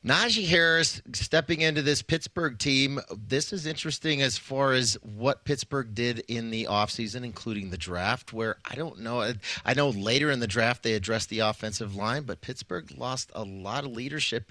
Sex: male